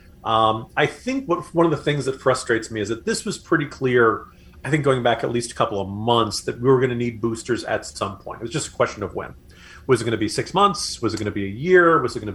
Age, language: 40-59, English